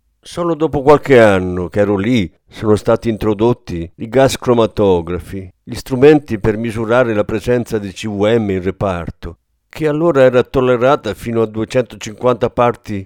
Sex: male